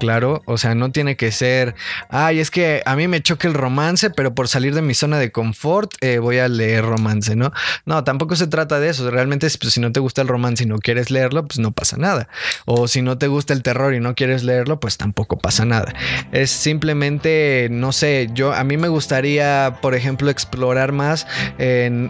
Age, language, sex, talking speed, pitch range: 20-39, Spanish, male, 220 wpm, 120-155 Hz